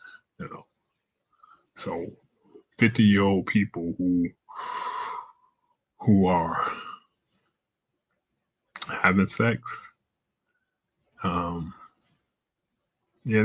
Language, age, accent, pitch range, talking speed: English, 20-39, American, 85-115 Hz, 60 wpm